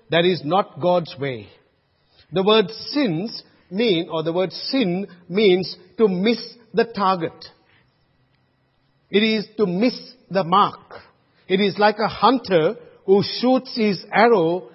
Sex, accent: male, Indian